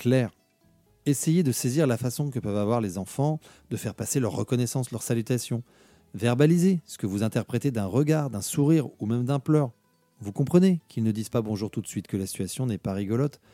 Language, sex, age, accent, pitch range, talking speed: French, male, 40-59, French, 105-140 Hz, 210 wpm